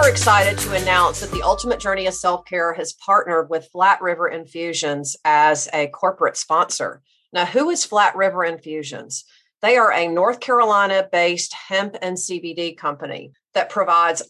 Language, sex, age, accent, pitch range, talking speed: English, female, 40-59, American, 160-195 Hz, 150 wpm